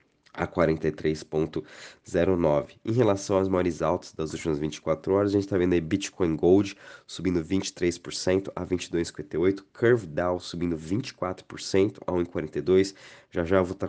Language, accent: Portuguese, Brazilian